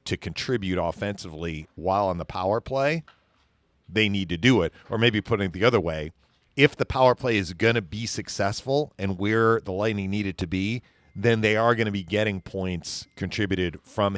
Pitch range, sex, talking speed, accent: 90-115 Hz, male, 195 wpm, American